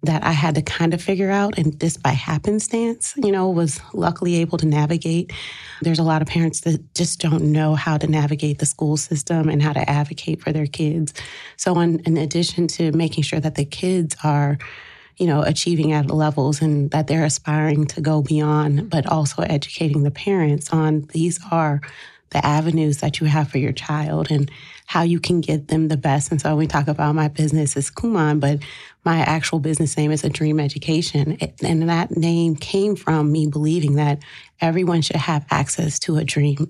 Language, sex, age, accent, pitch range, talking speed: English, female, 30-49, American, 150-165 Hz, 200 wpm